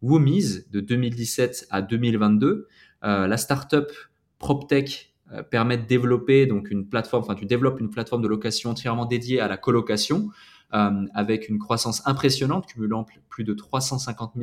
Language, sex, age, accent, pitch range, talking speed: French, male, 20-39, French, 110-140 Hz, 160 wpm